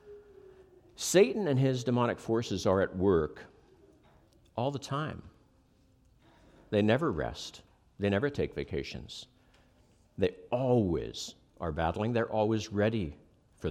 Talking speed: 115 wpm